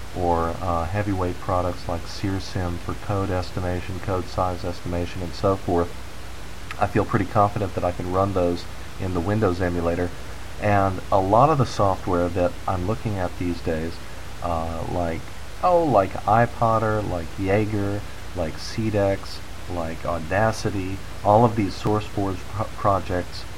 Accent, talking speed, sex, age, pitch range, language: American, 145 wpm, male, 40-59, 85-105 Hz, English